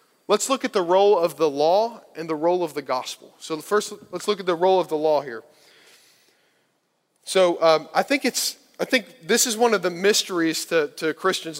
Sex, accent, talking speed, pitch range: male, American, 215 wpm, 155-205 Hz